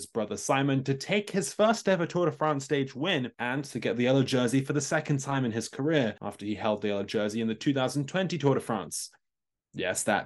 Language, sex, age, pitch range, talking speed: English, male, 20-39, 115-145 Hz, 230 wpm